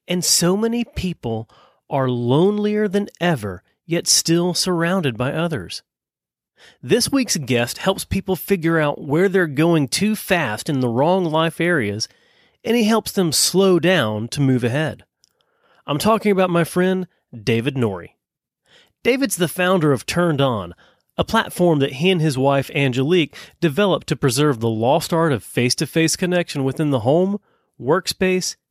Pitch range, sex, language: 130-180 Hz, male, English